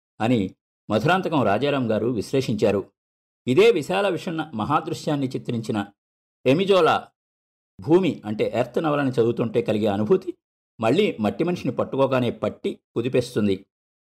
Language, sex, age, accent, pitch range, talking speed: Telugu, male, 50-69, native, 110-165 Hz, 100 wpm